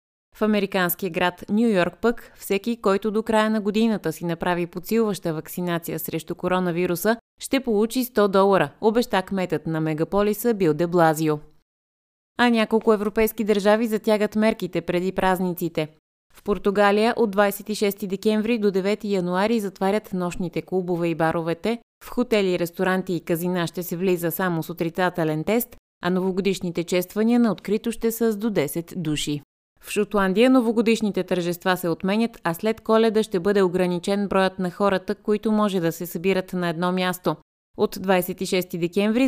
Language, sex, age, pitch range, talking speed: Bulgarian, female, 20-39, 175-215 Hz, 150 wpm